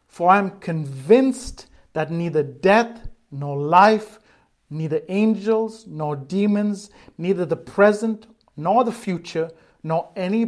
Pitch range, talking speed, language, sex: 150-195 Hz, 120 wpm, English, male